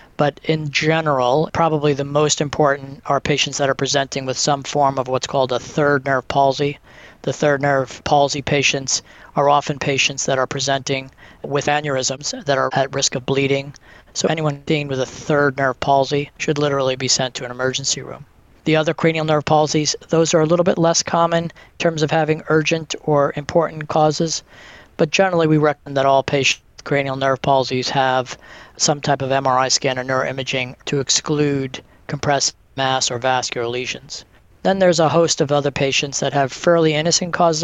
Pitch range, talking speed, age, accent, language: 135-155 Hz, 180 wpm, 40-59, American, English